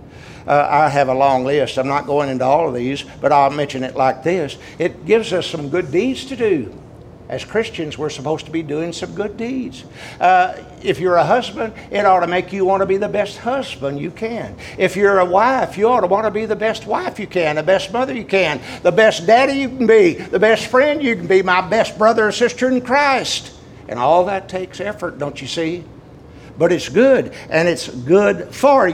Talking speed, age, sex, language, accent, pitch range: 225 wpm, 60-79, male, English, American, 145-205 Hz